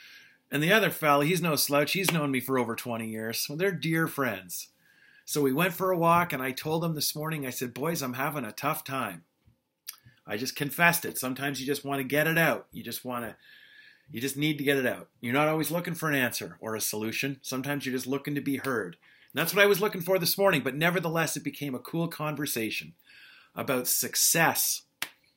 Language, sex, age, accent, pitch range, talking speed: English, male, 40-59, American, 135-170 Hz, 225 wpm